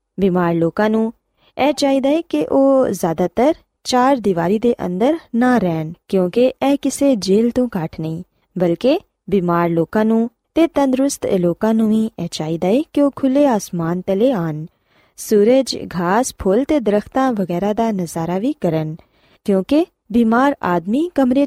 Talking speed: 145 wpm